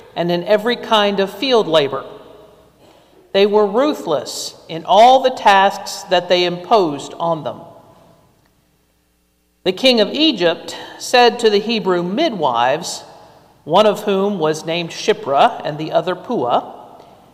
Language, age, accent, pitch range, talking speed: English, 50-69, American, 170-245 Hz, 130 wpm